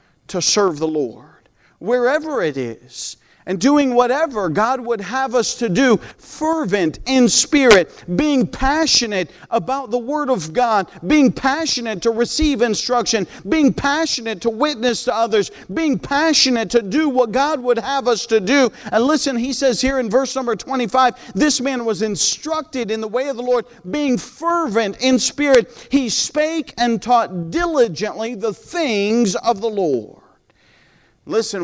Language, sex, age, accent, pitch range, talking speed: English, male, 50-69, American, 185-260 Hz, 155 wpm